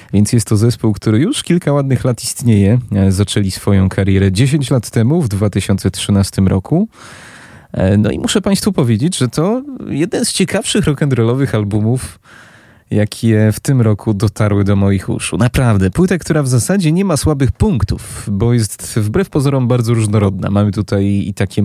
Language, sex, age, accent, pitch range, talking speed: Polish, male, 20-39, native, 100-130 Hz, 160 wpm